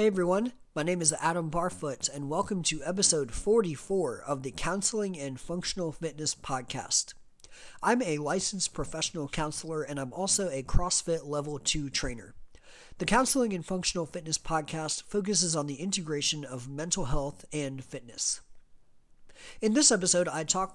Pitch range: 145-180 Hz